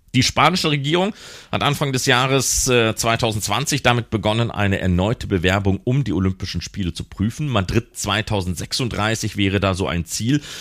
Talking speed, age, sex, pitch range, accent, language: 155 wpm, 40-59, male, 95-120 Hz, German, German